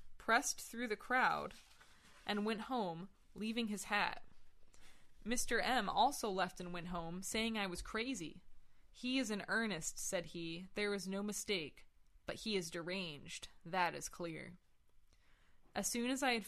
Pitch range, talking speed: 180-220 Hz, 155 wpm